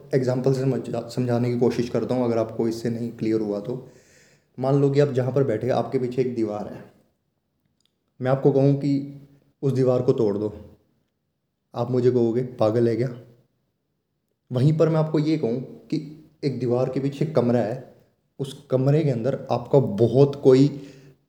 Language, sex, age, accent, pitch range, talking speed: Hindi, male, 20-39, native, 120-140 Hz, 175 wpm